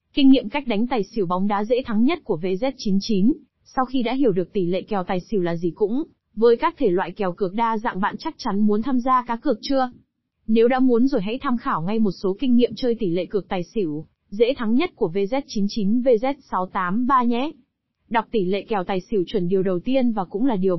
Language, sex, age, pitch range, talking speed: Vietnamese, female, 20-39, 195-255 Hz, 235 wpm